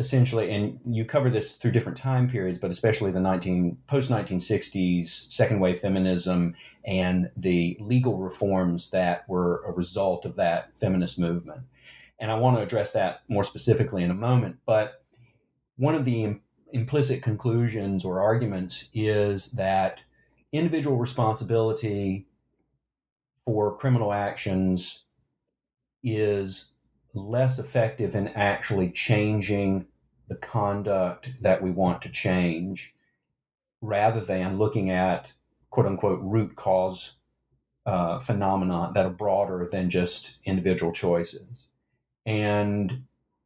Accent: American